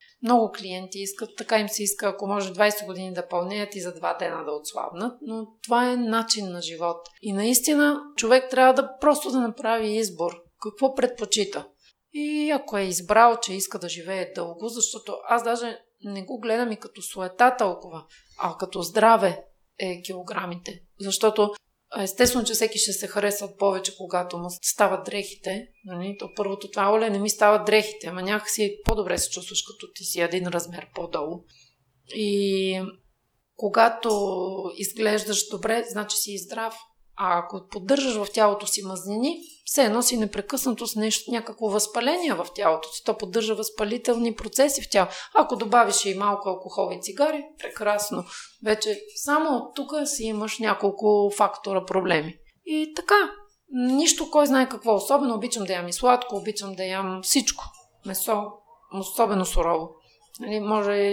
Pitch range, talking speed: 195-235 Hz, 155 wpm